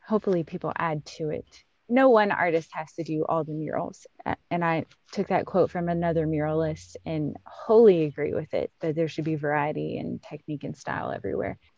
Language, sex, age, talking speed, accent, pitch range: English, female, 20-39, 190 wpm, American, 160-195 Hz